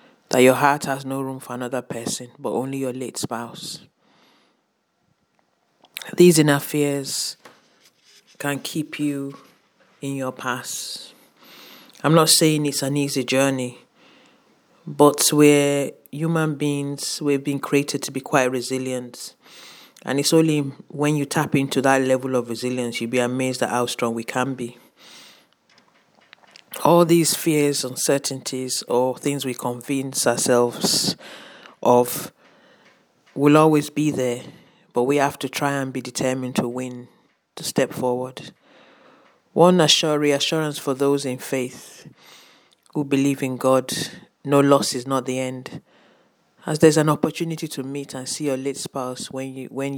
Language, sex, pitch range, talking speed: English, male, 130-145 Hz, 145 wpm